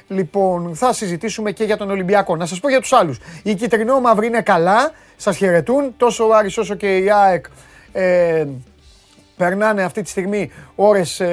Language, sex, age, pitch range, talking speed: Greek, male, 30-49, 145-210 Hz, 165 wpm